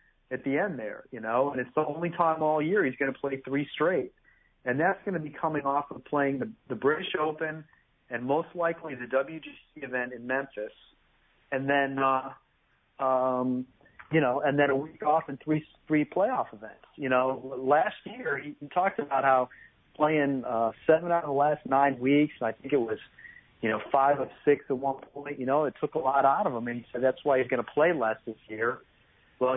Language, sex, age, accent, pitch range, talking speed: English, male, 40-59, American, 125-155 Hz, 215 wpm